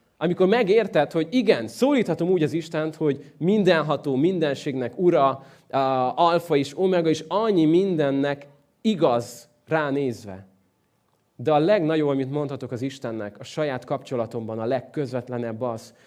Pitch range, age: 125-160 Hz, 30-49